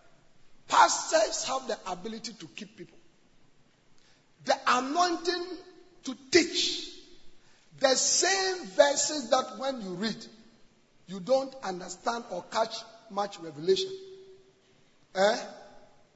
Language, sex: English, male